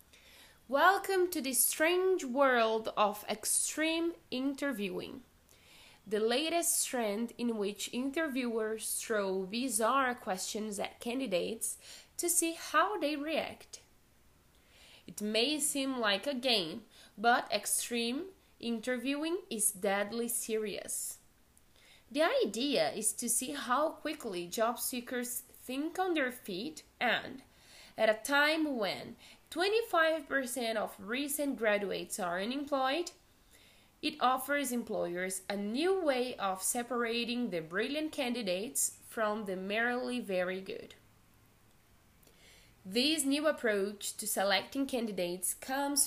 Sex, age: female, 10-29